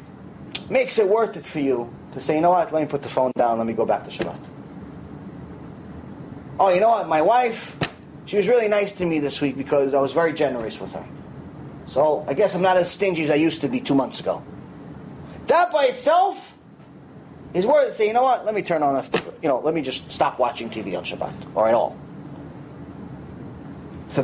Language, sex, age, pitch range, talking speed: English, male, 30-49, 170-285 Hz, 220 wpm